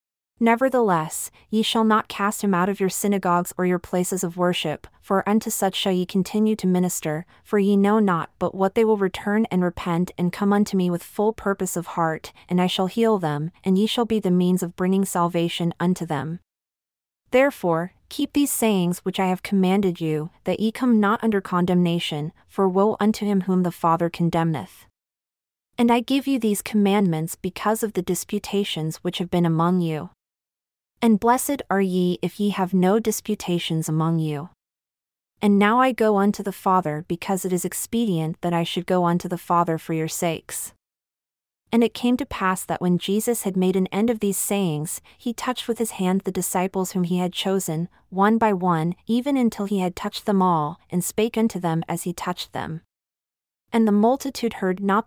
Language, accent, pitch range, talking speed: English, American, 175-210 Hz, 195 wpm